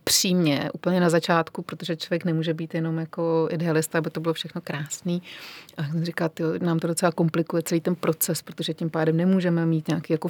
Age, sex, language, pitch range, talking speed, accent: 30-49, female, Czech, 160-175 Hz, 200 wpm, native